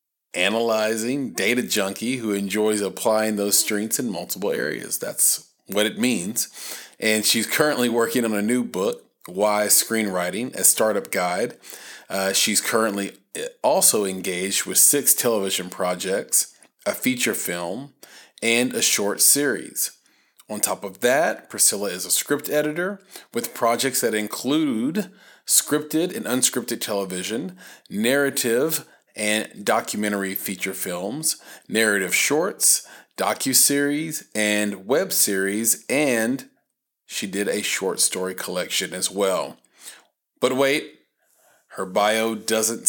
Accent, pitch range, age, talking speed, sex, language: American, 105-135 Hz, 30-49, 120 wpm, male, English